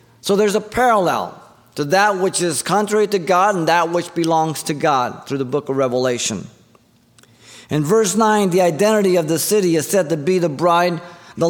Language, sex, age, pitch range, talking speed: English, male, 50-69, 145-195 Hz, 195 wpm